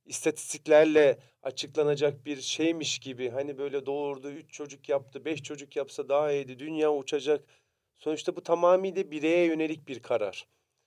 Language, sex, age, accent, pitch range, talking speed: Turkish, male, 40-59, native, 145-180 Hz, 140 wpm